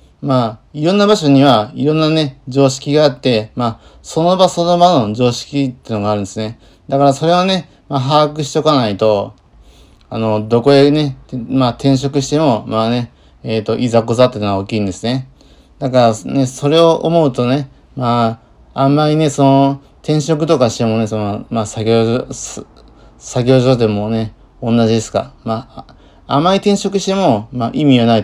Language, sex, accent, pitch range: Japanese, male, native, 110-140 Hz